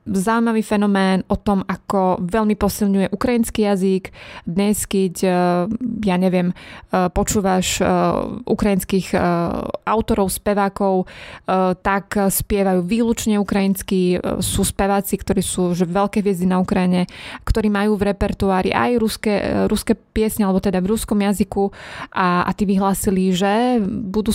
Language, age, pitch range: Slovak, 20-39, 190-220 Hz